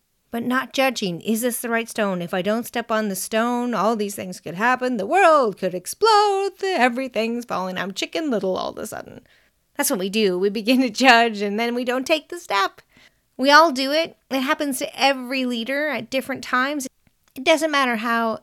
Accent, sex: American, female